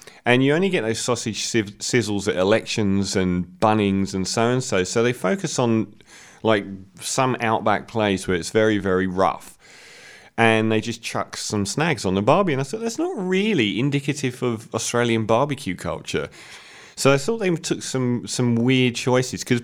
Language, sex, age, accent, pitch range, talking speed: English, male, 30-49, British, 100-145 Hz, 170 wpm